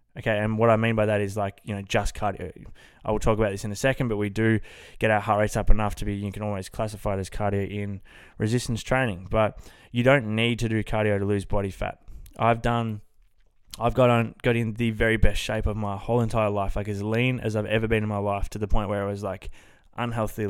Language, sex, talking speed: English, male, 255 wpm